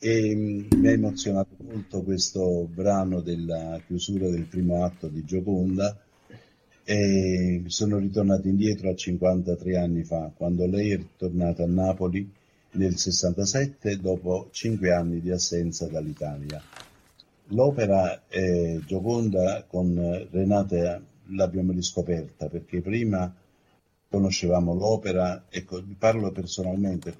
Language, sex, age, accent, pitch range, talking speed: Italian, male, 50-69, native, 90-105 Hz, 110 wpm